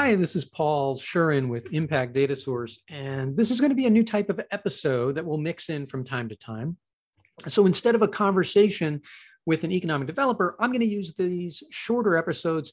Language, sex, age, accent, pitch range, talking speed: English, male, 40-59, American, 135-175 Hz, 205 wpm